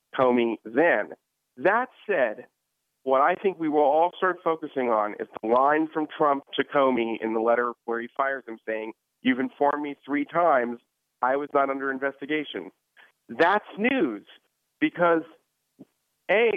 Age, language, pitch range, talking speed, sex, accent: 40-59, English, 125-180 Hz, 150 wpm, male, American